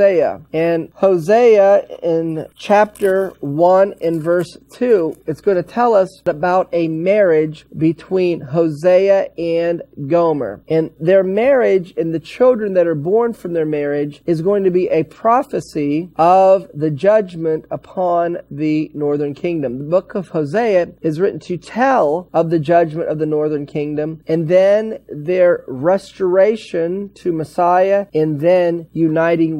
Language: English